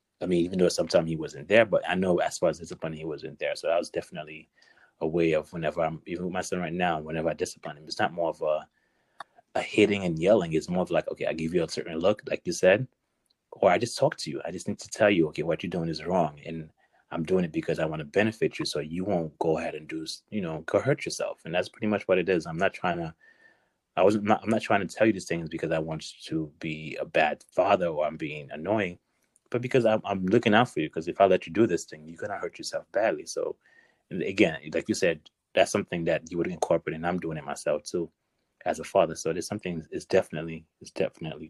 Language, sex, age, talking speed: English, male, 30-49, 265 wpm